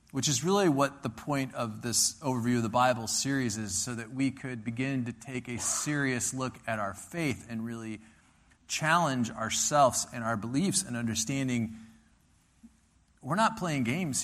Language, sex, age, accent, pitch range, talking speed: English, male, 40-59, American, 110-145 Hz, 170 wpm